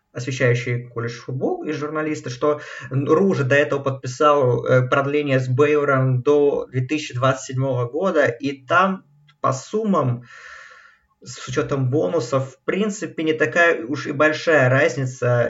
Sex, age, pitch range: male, 20-39, 125-150 Hz